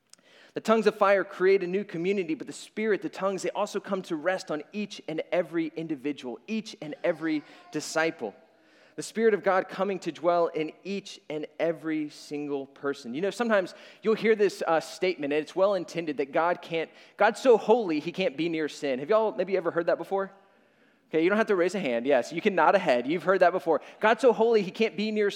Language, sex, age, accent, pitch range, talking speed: English, male, 30-49, American, 165-220 Hz, 220 wpm